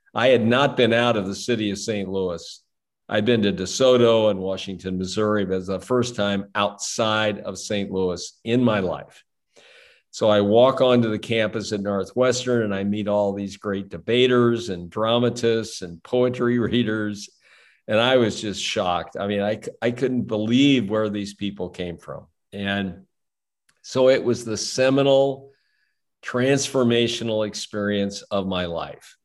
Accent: American